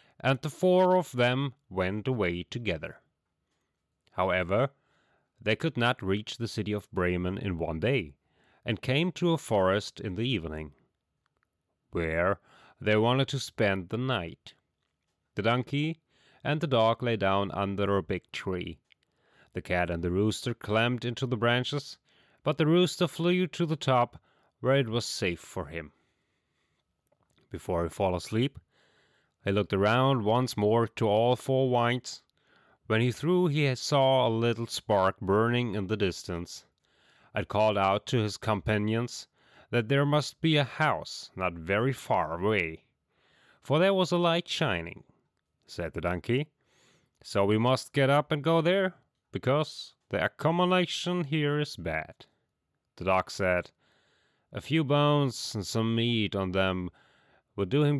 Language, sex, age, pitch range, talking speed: English, male, 30-49, 100-140 Hz, 150 wpm